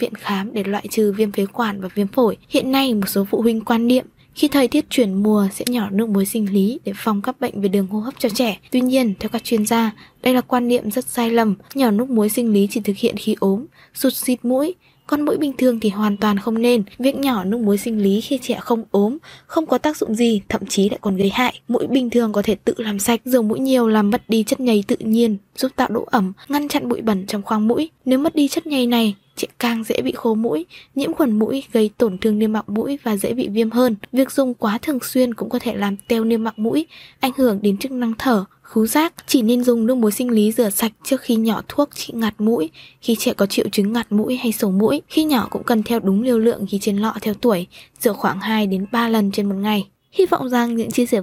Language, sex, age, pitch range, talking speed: Vietnamese, female, 20-39, 210-255 Hz, 265 wpm